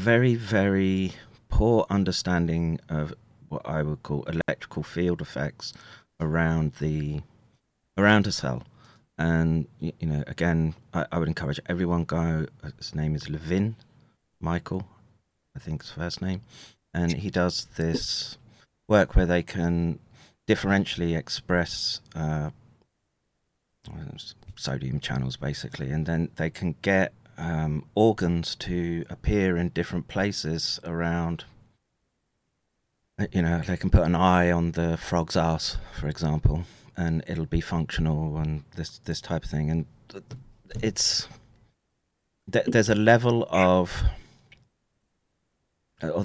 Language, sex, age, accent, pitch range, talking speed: English, male, 30-49, British, 80-100 Hz, 120 wpm